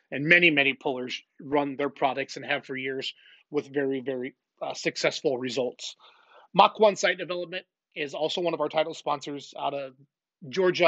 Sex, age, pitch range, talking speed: male, 30-49, 140-160 Hz, 170 wpm